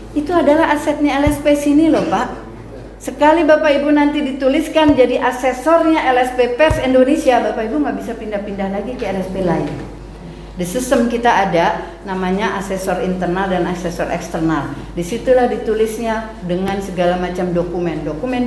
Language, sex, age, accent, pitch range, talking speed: Indonesian, female, 40-59, native, 170-220 Hz, 140 wpm